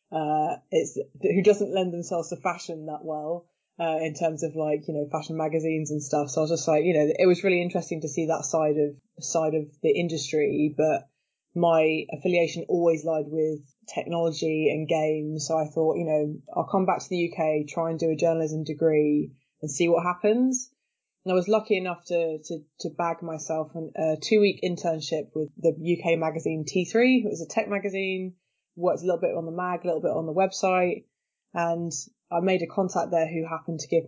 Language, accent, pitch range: English, British, 160-190 Hz